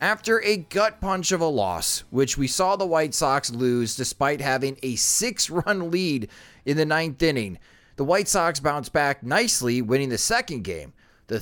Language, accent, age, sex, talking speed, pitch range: English, American, 30-49, male, 180 wpm, 130-180 Hz